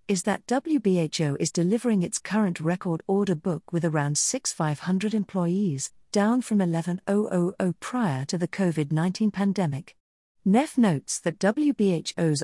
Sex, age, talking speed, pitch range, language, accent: female, 40-59, 130 wpm, 155-210 Hz, English, British